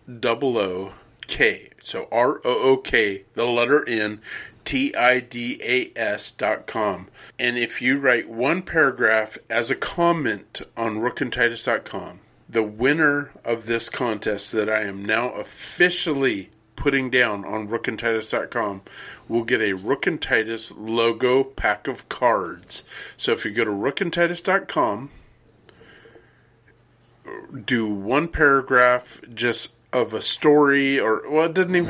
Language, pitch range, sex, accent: English, 115-150 Hz, male, American